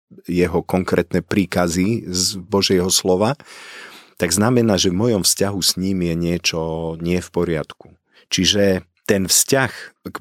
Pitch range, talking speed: 85-105 Hz, 135 wpm